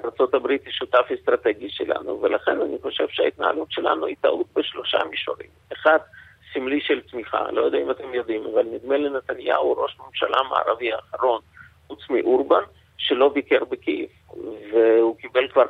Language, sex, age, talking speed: Hebrew, male, 50-69, 145 wpm